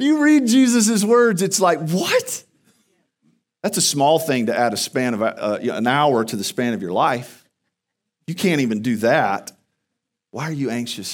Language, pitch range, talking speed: English, 110-175 Hz, 185 wpm